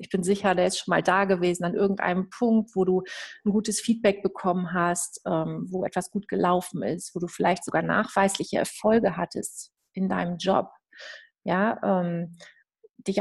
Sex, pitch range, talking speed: female, 180-210 Hz, 160 wpm